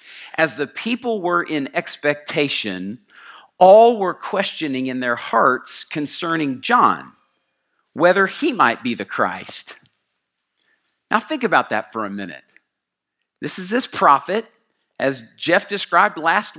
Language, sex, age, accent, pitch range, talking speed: English, male, 50-69, American, 160-230 Hz, 125 wpm